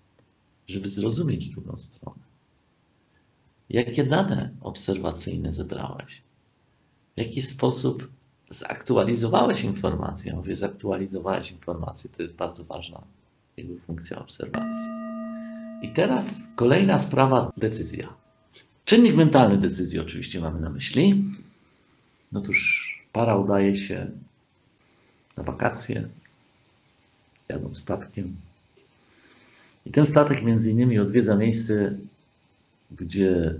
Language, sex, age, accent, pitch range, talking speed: Polish, male, 50-69, native, 95-140 Hz, 95 wpm